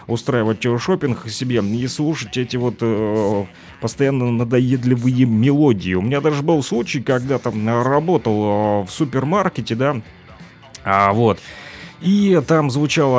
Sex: male